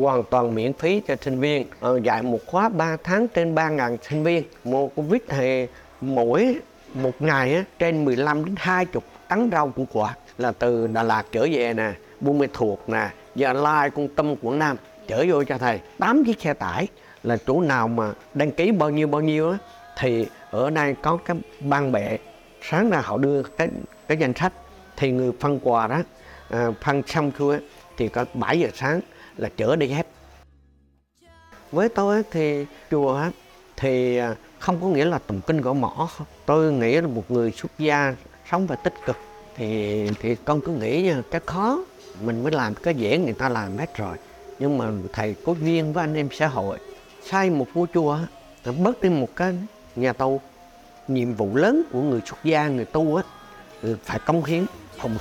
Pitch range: 120-165 Hz